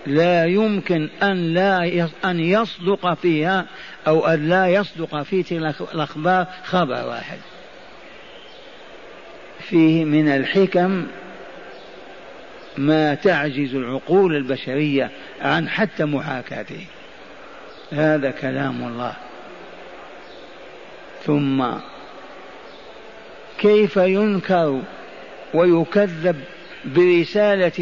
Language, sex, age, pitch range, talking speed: Arabic, male, 50-69, 145-180 Hz, 70 wpm